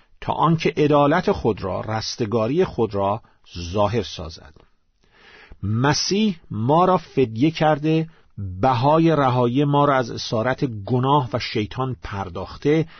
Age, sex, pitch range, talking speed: 50-69, male, 100-145 Hz, 115 wpm